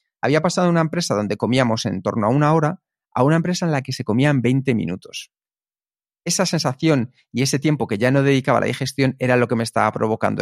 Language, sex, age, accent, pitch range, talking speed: Spanish, male, 40-59, Spanish, 115-155 Hz, 230 wpm